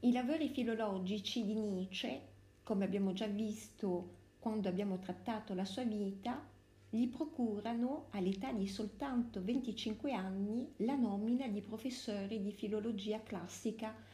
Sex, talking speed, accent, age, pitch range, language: female, 125 wpm, native, 50-69, 190-235 Hz, Italian